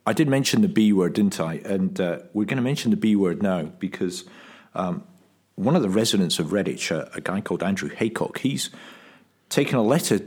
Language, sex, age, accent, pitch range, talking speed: English, male, 50-69, British, 95-130 Hz, 210 wpm